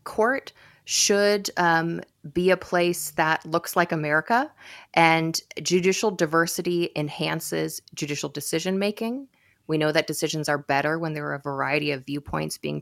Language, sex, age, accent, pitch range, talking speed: English, female, 30-49, American, 140-170 Hz, 145 wpm